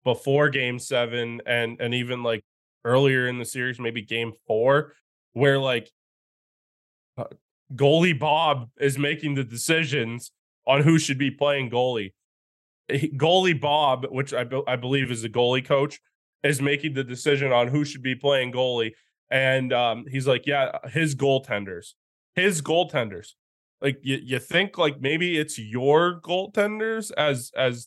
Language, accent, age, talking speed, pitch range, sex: English, American, 20-39, 155 wpm, 125-150 Hz, male